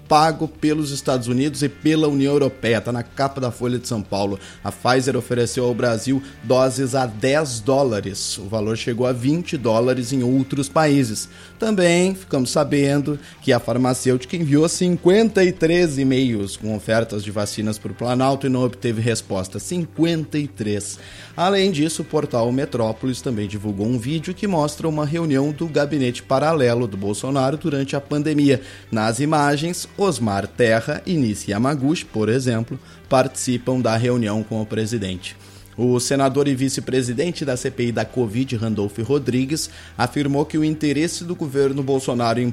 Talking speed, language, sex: 155 wpm, Portuguese, male